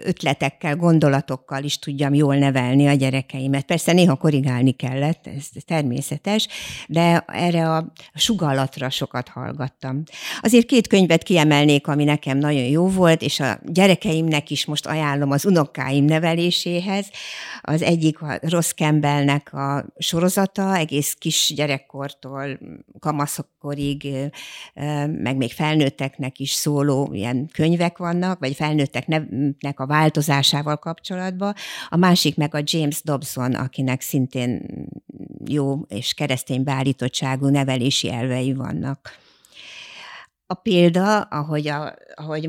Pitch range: 140-165 Hz